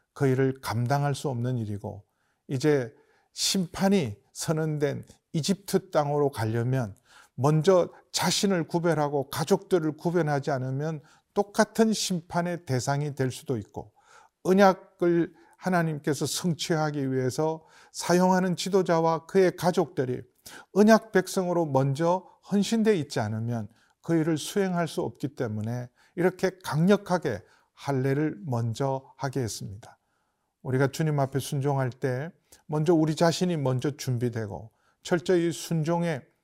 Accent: native